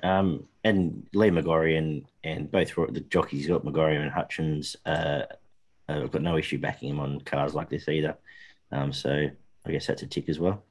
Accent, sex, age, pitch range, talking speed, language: Australian, male, 30-49, 85-105 Hz, 190 wpm, English